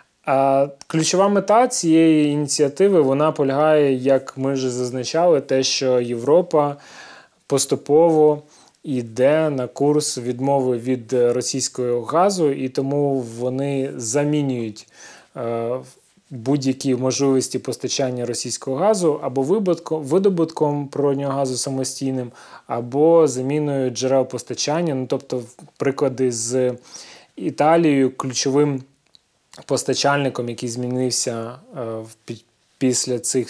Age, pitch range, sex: 20-39, 125-145 Hz, male